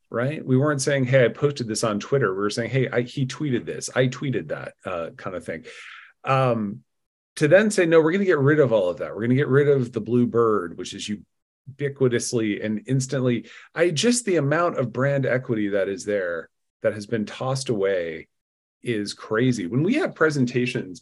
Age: 40-59